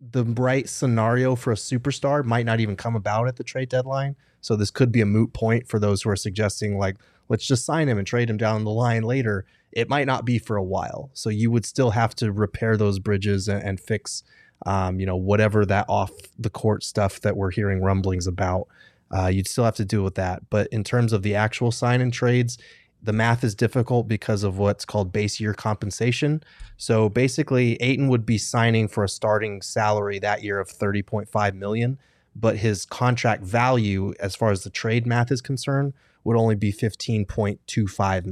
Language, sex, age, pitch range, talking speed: English, male, 20-39, 100-120 Hz, 205 wpm